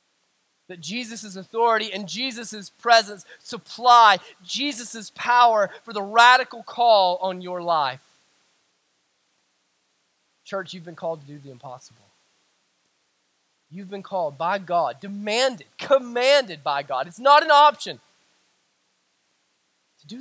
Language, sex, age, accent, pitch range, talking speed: English, male, 20-39, American, 210-300 Hz, 115 wpm